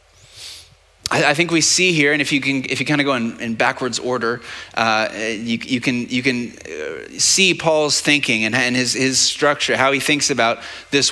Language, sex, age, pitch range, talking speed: English, male, 30-49, 120-150 Hz, 200 wpm